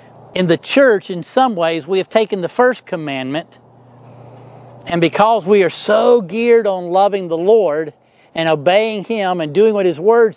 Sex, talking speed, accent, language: male, 175 wpm, American, English